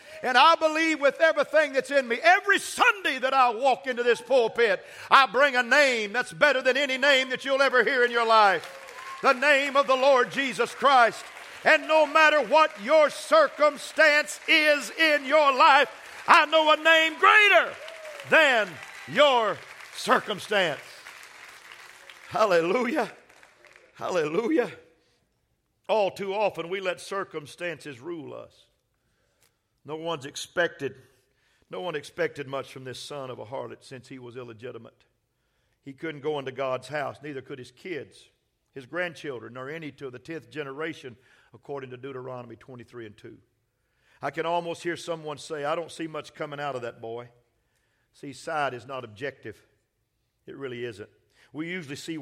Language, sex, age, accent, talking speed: English, male, 50-69, American, 155 wpm